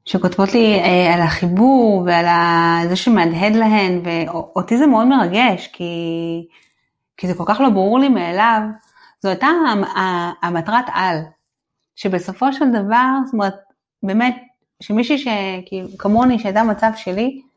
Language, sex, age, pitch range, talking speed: Hebrew, female, 30-49, 180-245 Hz, 130 wpm